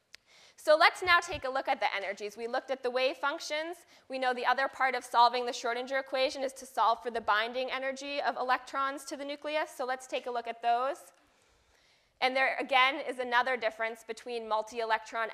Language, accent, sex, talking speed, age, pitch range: English, American, female, 205 wpm, 20-39, 230-275 Hz